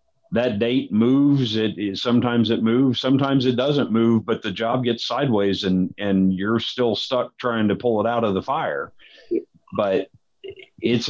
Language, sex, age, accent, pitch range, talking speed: English, male, 50-69, American, 100-125 Hz, 175 wpm